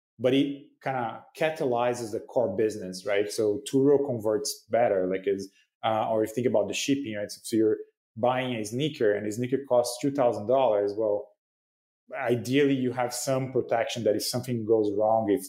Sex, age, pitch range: male, 30-49, 110-130 Hz